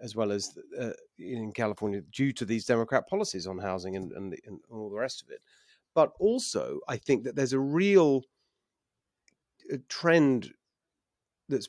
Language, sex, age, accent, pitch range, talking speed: English, male, 40-59, British, 110-150 Hz, 165 wpm